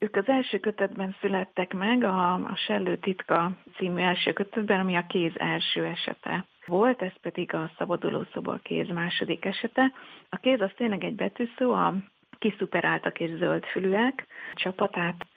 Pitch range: 170-215 Hz